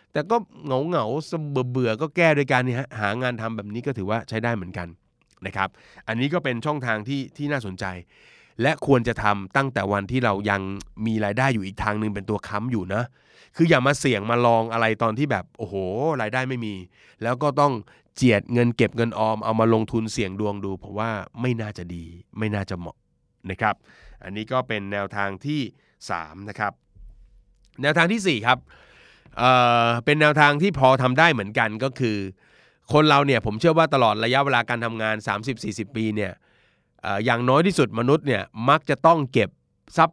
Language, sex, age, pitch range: Thai, male, 20-39, 100-130 Hz